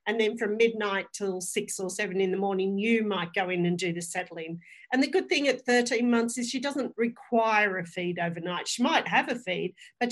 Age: 40-59